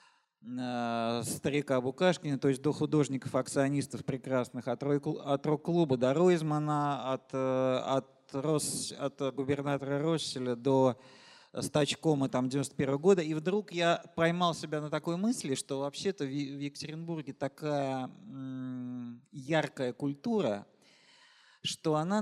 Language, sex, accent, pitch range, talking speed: Russian, male, native, 130-165 Hz, 105 wpm